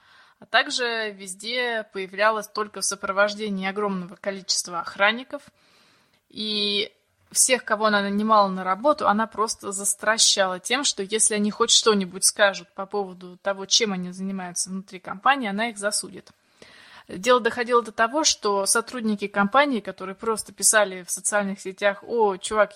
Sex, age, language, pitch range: female, 20-39, Russian, 195-230 Hz